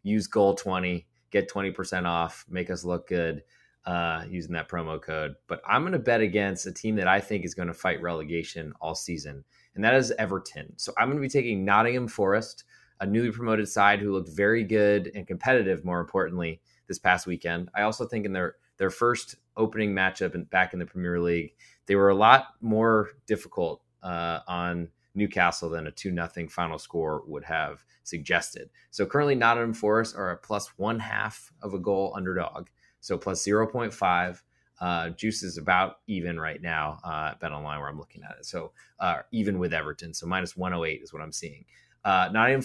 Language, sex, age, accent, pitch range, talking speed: English, male, 20-39, American, 85-105 Hz, 195 wpm